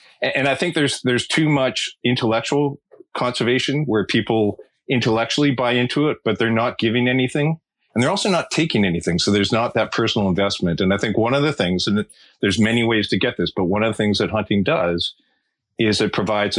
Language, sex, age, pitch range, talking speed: English, male, 40-59, 95-125 Hz, 205 wpm